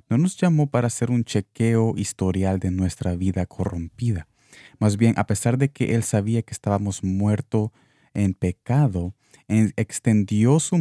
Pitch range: 95-120 Hz